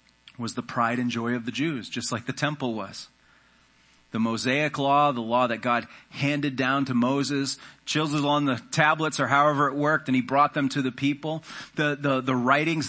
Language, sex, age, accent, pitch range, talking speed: English, male, 30-49, American, 125-155 Hz, 200 wpm